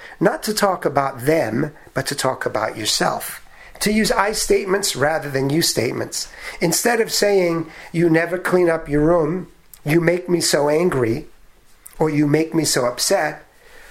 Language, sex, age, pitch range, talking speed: English, male, 50-69, 130-195 Hz, 165 wpm